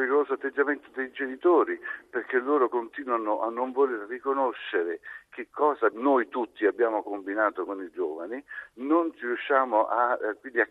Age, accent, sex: 60-79, native, male